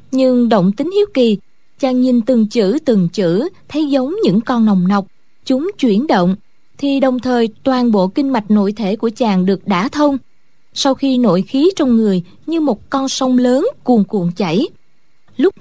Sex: female